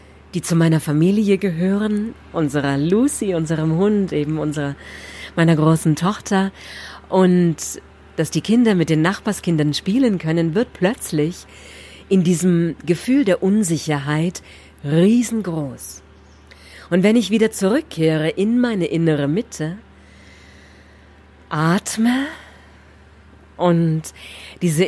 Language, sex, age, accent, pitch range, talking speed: German, female, 40-59, German, 150-200 Hz, 100 wpm